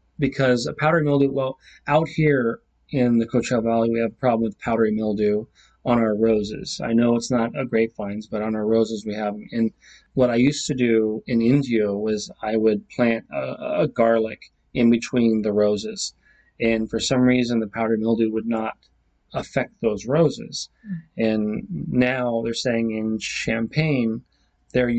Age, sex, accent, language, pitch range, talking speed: 30-49, male, American, English, 110-125 Hz, 175 wpm